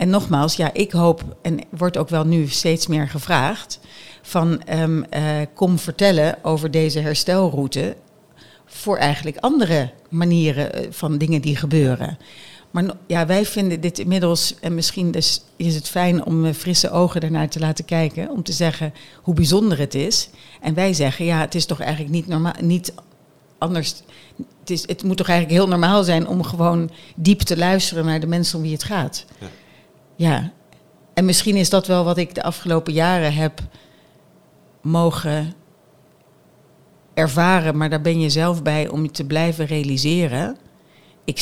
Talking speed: 160 wpm